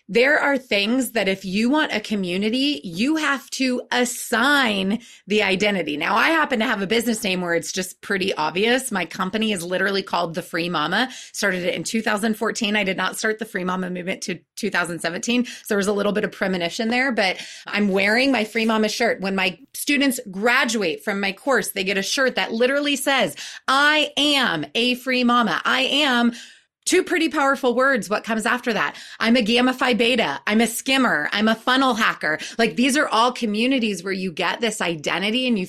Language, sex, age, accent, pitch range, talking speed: English, female, 30-49, American, 190-250 Hz, 200 wpm